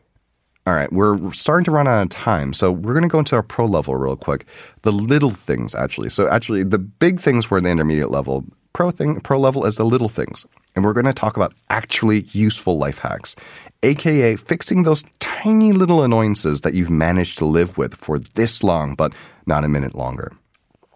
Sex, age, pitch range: male, 30-49, 80-120 Hz